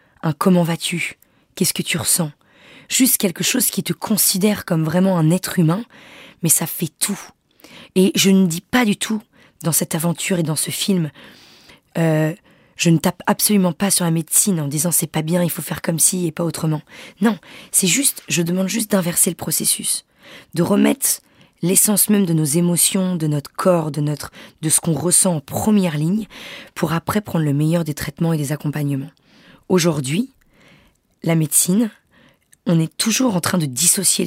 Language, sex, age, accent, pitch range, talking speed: French, female, 20-39, French, 160-205 Hz, 180 wpm